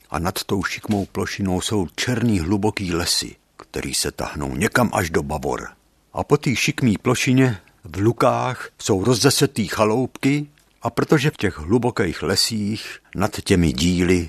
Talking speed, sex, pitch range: 145 wpm, male, 80-125 Hz